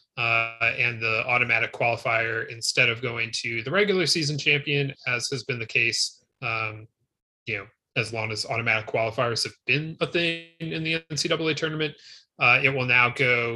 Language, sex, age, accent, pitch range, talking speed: English, male, 30-49, American, 115-140 Hz, 175 wpm